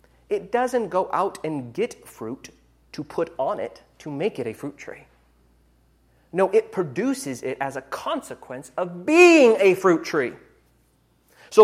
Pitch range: 140-235 Hz